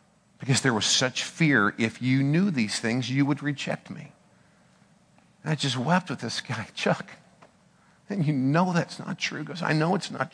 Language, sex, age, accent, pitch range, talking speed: English, male, 50-69, American, 120-155 Hz, 195 wpm